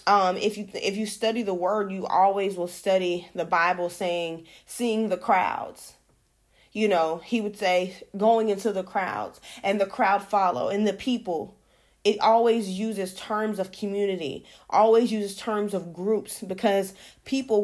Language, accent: English, American